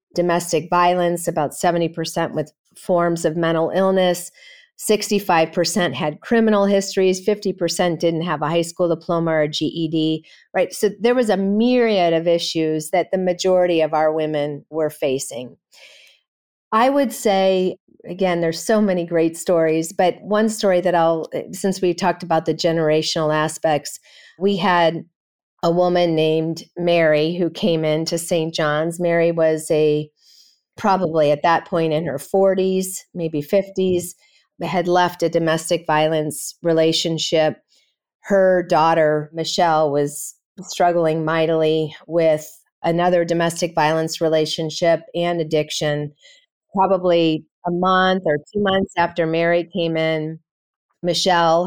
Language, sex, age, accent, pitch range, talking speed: English, female, 40-59, American, 160-185 Hz, 130 wpm